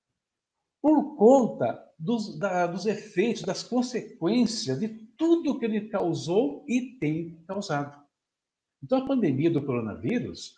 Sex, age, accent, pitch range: male, 60-79, Brazilian, 140-225 Hz